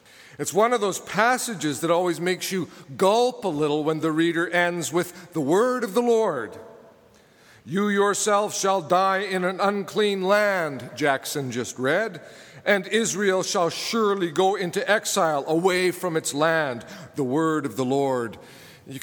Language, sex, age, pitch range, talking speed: English, male, 50-69, 155-205 Hz, 160 wpm